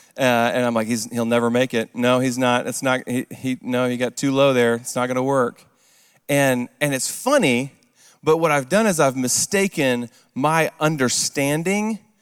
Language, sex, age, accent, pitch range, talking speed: English, male, 40-59, American, 120-155 Hz, 195 wpm